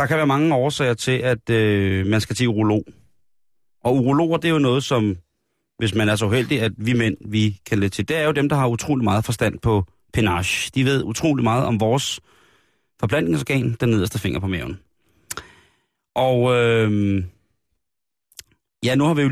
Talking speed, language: 190 wpm, Danish